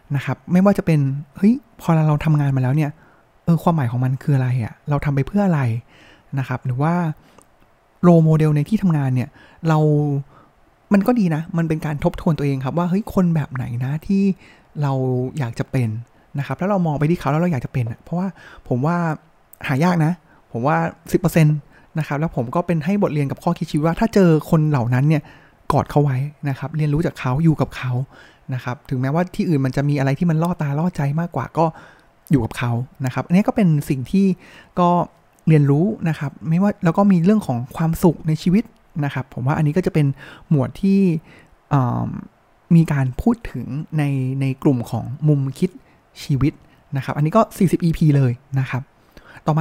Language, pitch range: Thai, 135-175 Hz